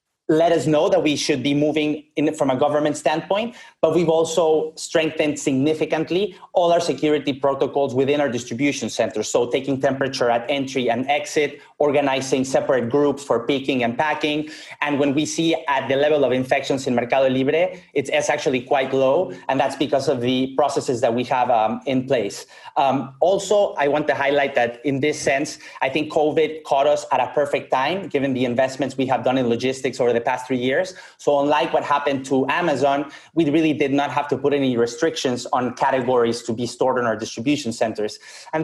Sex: male